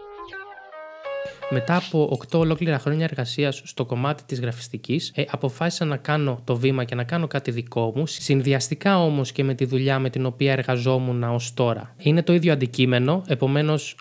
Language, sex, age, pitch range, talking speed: Greek, male, 20-39, 135-165 Hz, 165 wpm